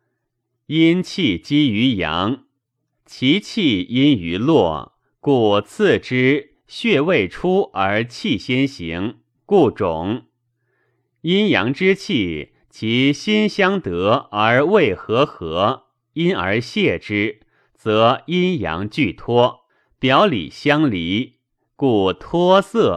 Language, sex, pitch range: Chinese, male, 105-165 Hz